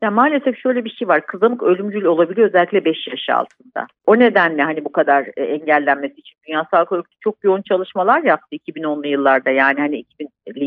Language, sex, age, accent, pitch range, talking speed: Turkish, female, 50-69, native, 170-245 Hz, 180 wpm